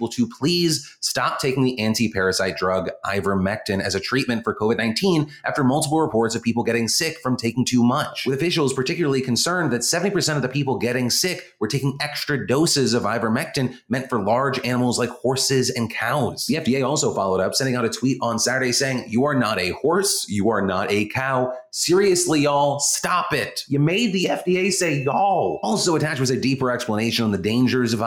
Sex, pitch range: male, 115-150 Hz